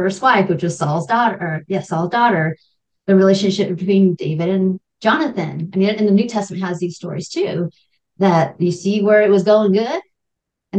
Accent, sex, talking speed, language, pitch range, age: American, female, 200 wpm, English, 170-200 Hz, 30-49